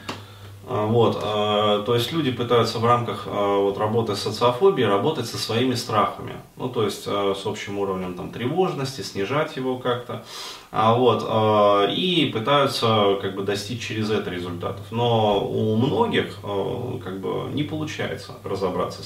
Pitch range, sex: 100-125 Hz, male